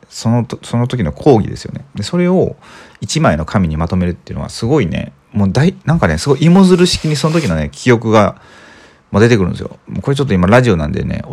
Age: 40-59